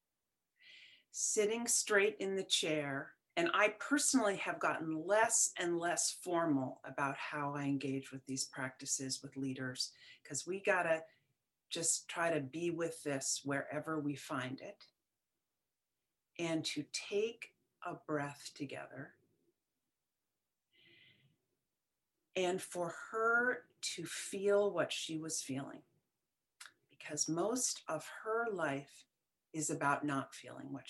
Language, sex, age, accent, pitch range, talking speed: English, female, 40-59, American, 150-250 Hz, 120 wpm